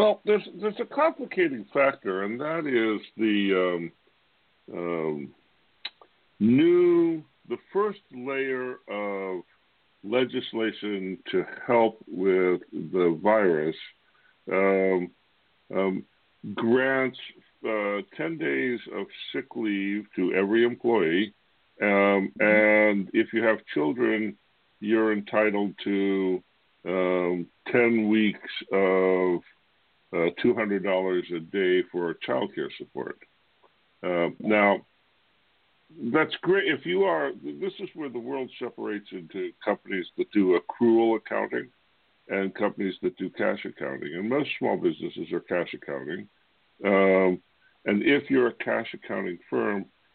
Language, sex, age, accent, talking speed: English, female, 60-79, American, 115 wpm